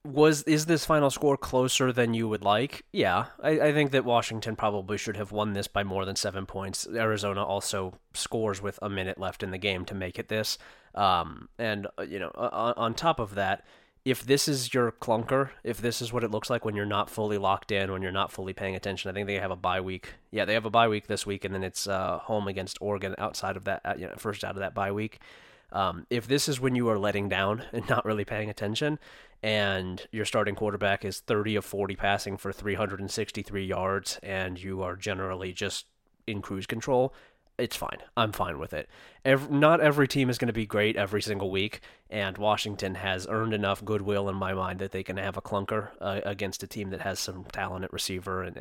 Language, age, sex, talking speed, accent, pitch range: English, 20-39, male, 225 wpm, American, 95-115 Hz